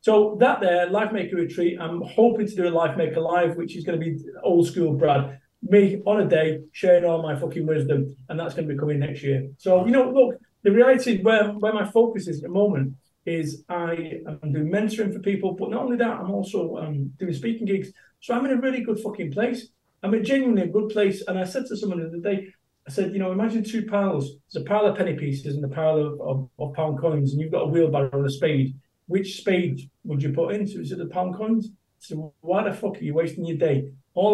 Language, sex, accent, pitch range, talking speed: English, male, British, 155-210 Hz, 245 wpm